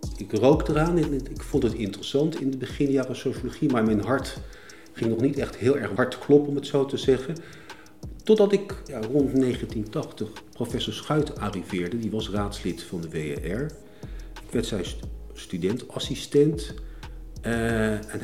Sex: male